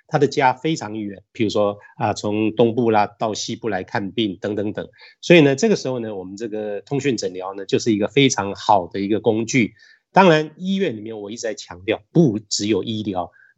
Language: Chinese